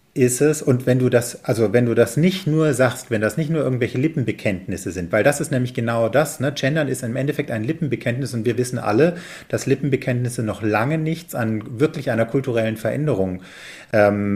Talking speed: 200 wpm